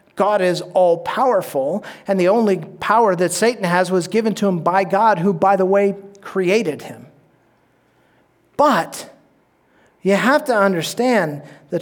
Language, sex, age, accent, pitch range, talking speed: English, male, 40-59, American, 175-225 Hz, 145 wpm